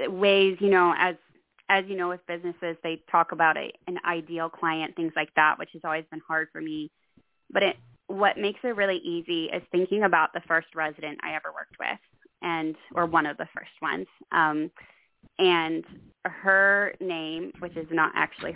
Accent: American